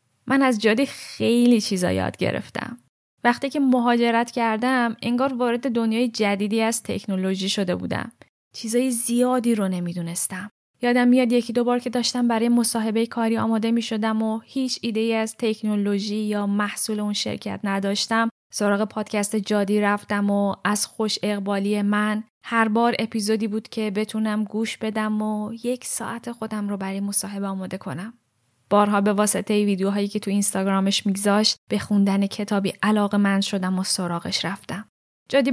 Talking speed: 155 wpm